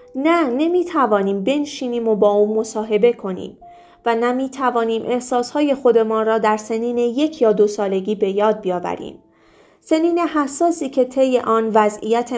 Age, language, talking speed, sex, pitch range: 30-49, Persian, 135 wpm, female, 210-275 Hz